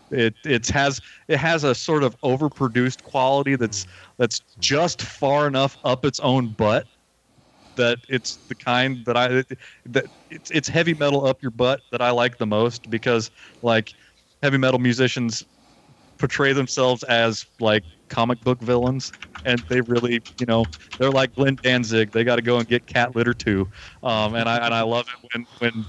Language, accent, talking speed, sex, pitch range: English, American, 180 wpm, male, 110-130 Hz